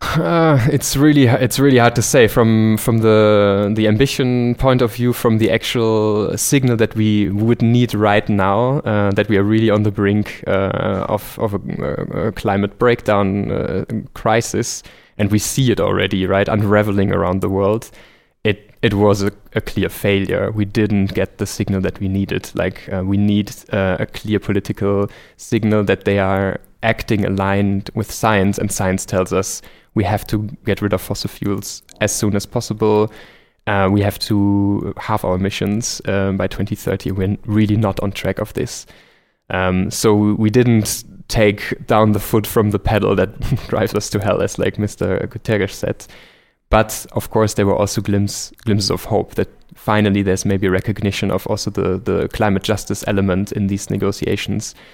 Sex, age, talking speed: male, 20-39, 180 wpm